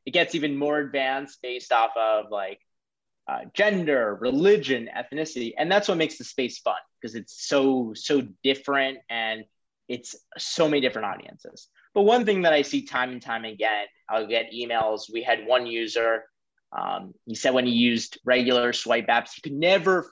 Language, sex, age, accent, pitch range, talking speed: English, male, 20-39, American, 125-160 Hz, 180 wpm